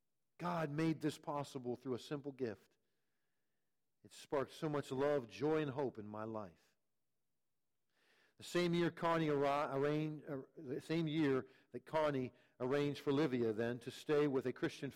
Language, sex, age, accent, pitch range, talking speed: English, male, 50-69, American, 115-155 Hz, 135 wpm